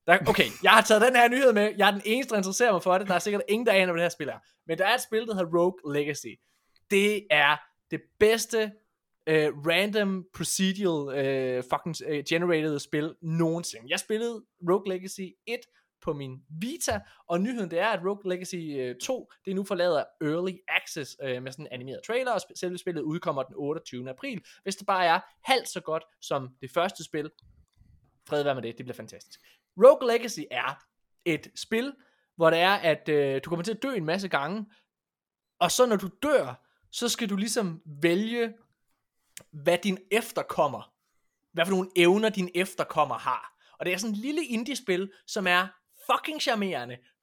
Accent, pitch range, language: native, 155-210 Hz, Danish